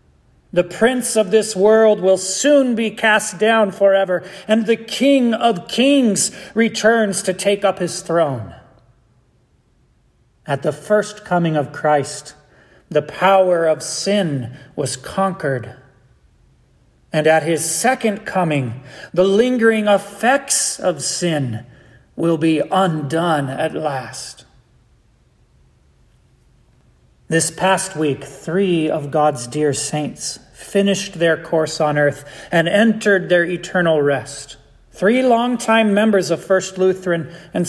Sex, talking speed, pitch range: male, 120 wpm, 155-205 Hz